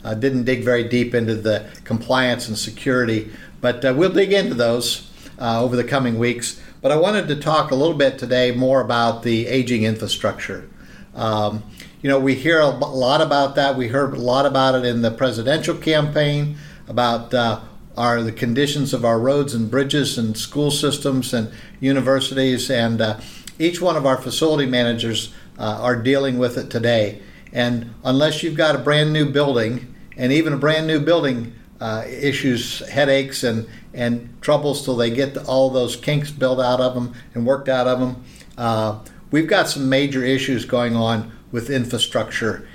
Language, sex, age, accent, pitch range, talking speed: English, male, 50-69, American, 115-145 Hz, 180 wpm